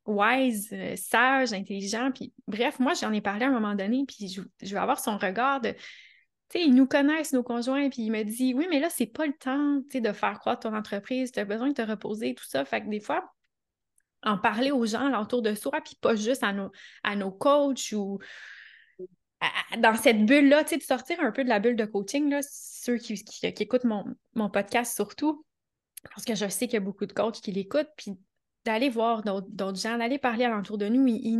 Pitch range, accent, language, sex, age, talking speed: 210-260 Hz, Canadian, French, female, 20-39, 235 wpm